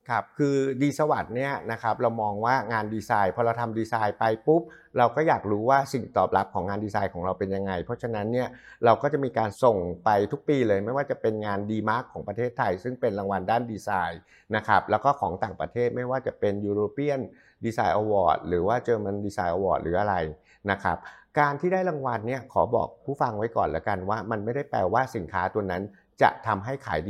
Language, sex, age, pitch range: Thai, male, 60-79, 100-130 Hz